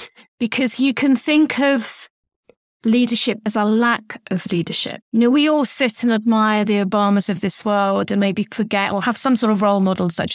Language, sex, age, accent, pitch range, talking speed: English, female, 30-49, British, 205-245 Hz, 195 wpm